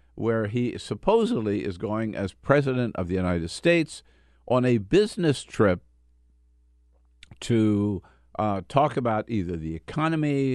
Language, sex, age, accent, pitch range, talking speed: English, male, 60-79, American, 90-125 Hz, 125 wpm